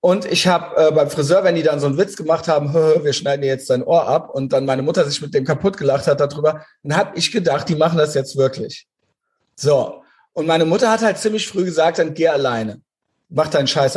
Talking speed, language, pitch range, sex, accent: 235 wpm, German, 135-175 Hz, male, German